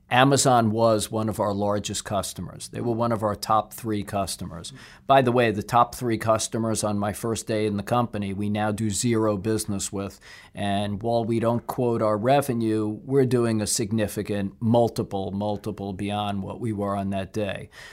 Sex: male